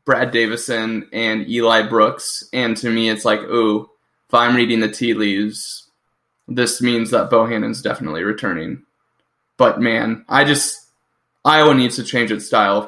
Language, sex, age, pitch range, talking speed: English, male, 10-29, 110-120 Hz, 160 wpm